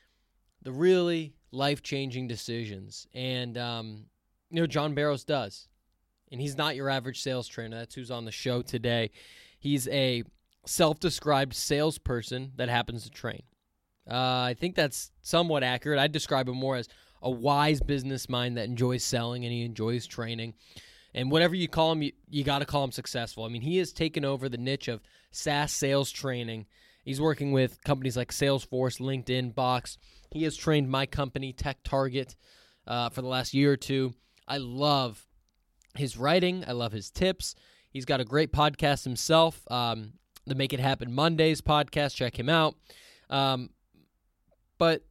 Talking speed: 170 wpm